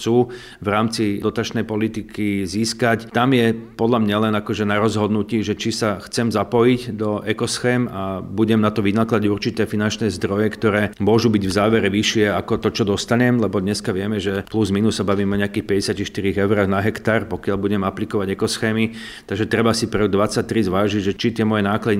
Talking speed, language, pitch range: 185 wpm, Slovak, 100-110 Hz